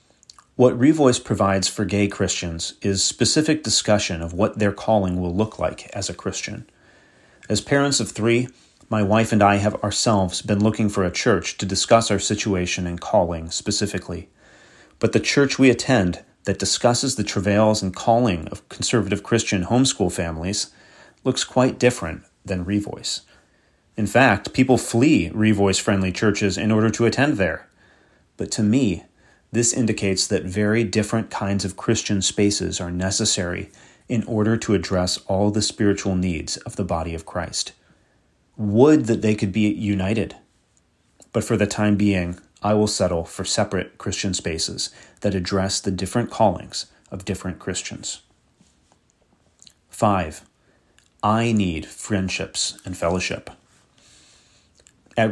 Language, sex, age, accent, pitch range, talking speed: English, male, 30-49, American, 95-110 Hz, 145 wpm